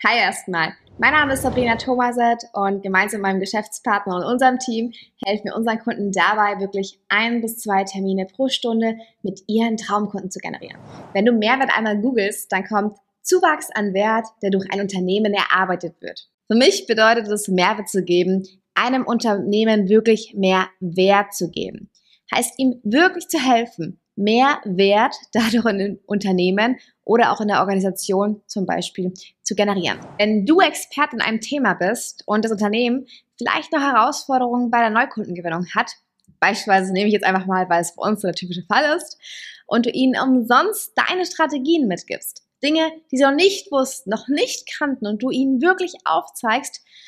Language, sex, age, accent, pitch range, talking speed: German, female, 20-39, German, 195-260 Hz, 170 wpm